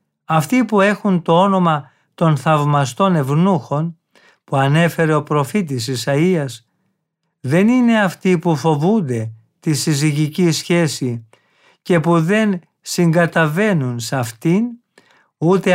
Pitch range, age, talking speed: 140-180 Hz, 50-69, 105 wpm